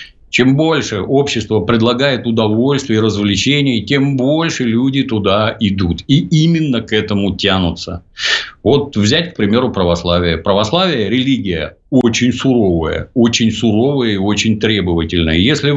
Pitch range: 100-130 Hz